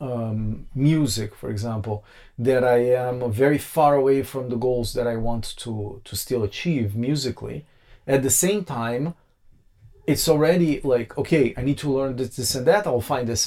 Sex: male